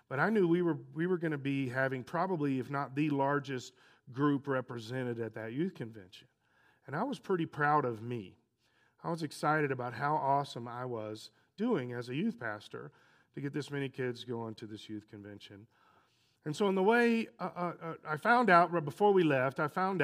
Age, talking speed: 40-59, 205 wpm